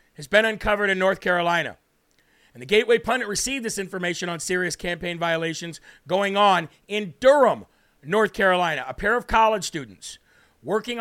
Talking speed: 160 wpm